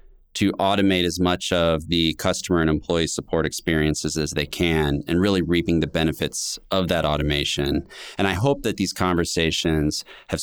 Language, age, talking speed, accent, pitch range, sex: English, 30-49, 165 wpm, American, 80-100 Hz, male